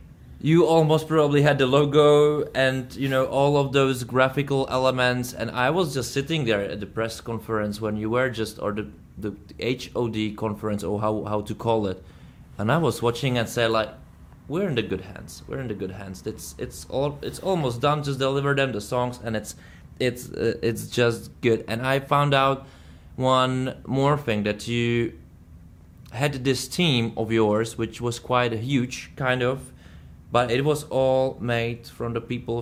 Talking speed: 190 wpm